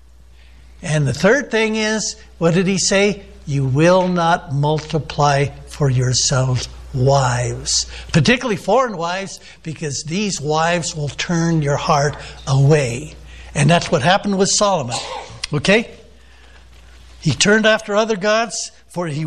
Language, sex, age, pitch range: English, male, 60-79, 145-200 Hz